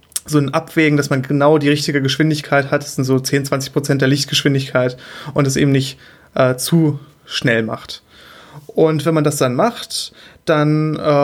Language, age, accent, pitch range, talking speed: German, 20-39, German, 135-155 Hz, 175 wpm